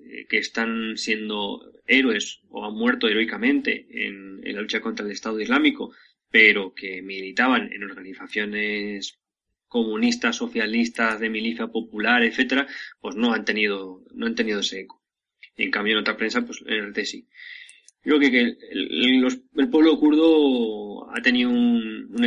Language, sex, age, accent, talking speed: Spanish, male, 20-39, Spanish, 155 wpm